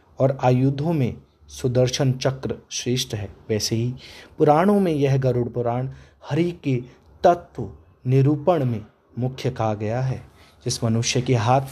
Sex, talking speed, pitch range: male, 140 wpm, 110-135 Hz